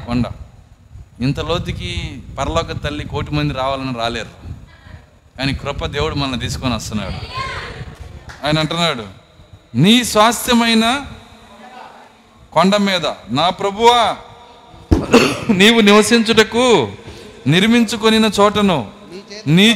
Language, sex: Telugu, male